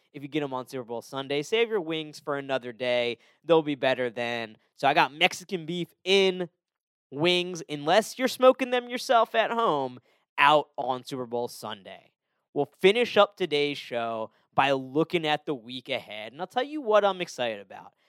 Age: 20-39